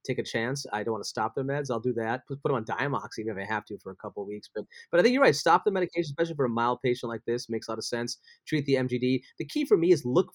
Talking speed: 335 wpm